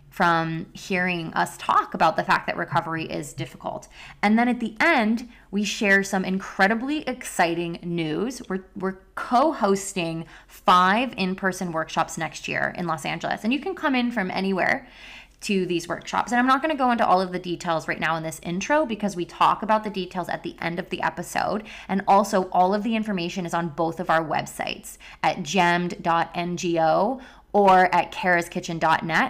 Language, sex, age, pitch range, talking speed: English, female, 20-39, 175-215 Hz, 180 wpm